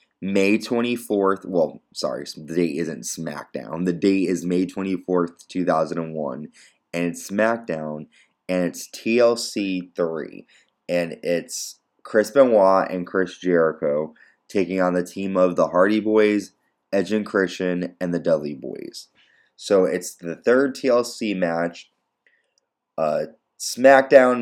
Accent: American